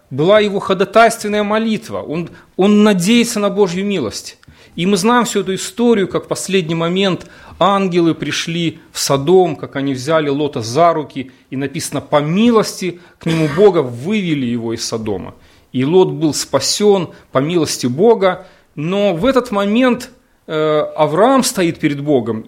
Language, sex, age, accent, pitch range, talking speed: Russian, male, 30-49, native, 120-185 Hz, 150 wpm